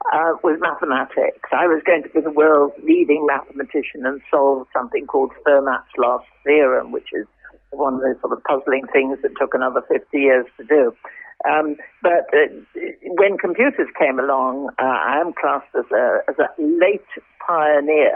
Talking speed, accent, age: 170 wpm, British, 60-79